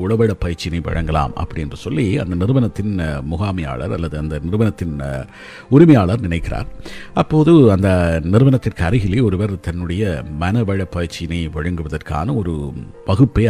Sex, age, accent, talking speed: male, 50-69, native, 100 wpm